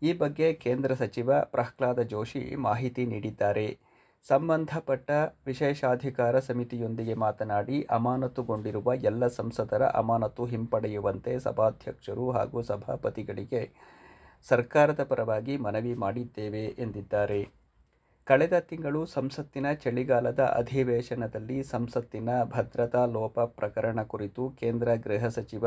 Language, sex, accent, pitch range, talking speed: Kannada, male, native, 110-130 Hz, 90 wpm